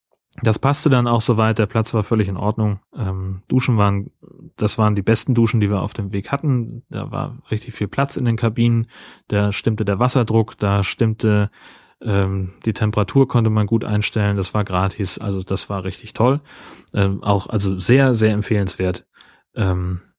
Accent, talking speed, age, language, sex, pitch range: German, 180 wpm, 30-49, German, male, 100-115 Hz